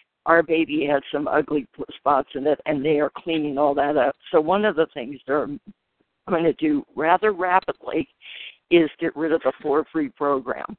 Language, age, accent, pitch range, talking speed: English, 60-79, American, 145-170 Hz, 190 wpm